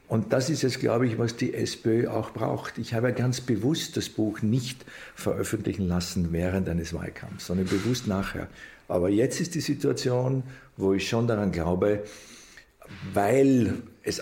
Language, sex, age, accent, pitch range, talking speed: German, male, 50-69, Austrian, 95-125 Hz, 160 wpm